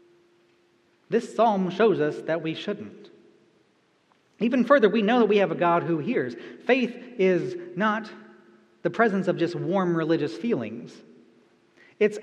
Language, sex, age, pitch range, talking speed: English, male, 40-59, 175-230 Hz, 140 wpm